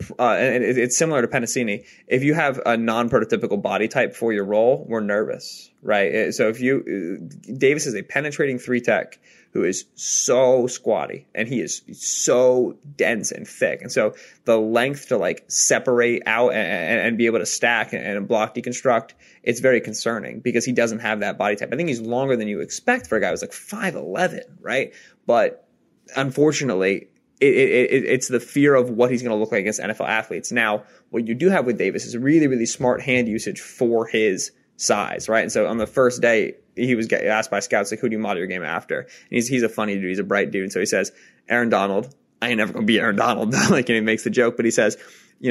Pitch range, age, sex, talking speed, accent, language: 110-125 Hz, 20-39, male, 225 wpm, American, English